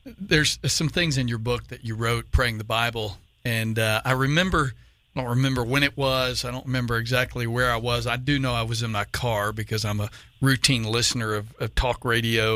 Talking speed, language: 215 wpm, English